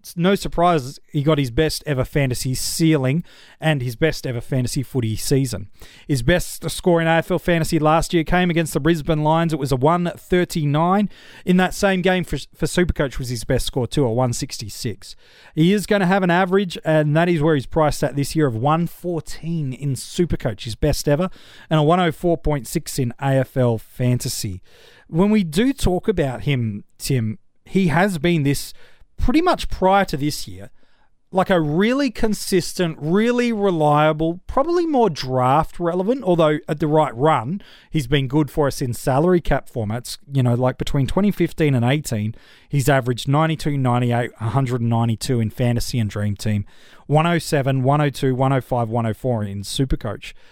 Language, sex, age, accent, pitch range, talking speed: English, male, 40-59, Australian, 130-175 Hz, 165 wpm